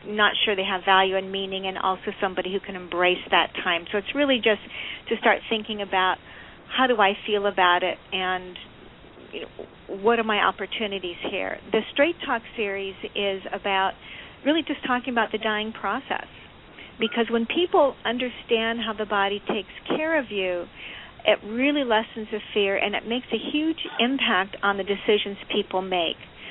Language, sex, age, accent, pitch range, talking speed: English, female, 50-69, American, 190-230 Hz, 170 wpm